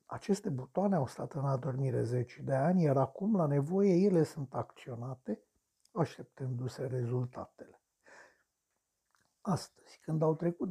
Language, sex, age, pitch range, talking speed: Romanian, male, 60-79, 130-185 Hz, 125 wpm